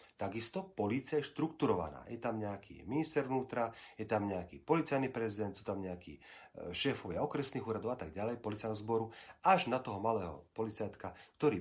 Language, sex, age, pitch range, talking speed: Slovak, male, 40-59, 100-140 Hz, 160 wpm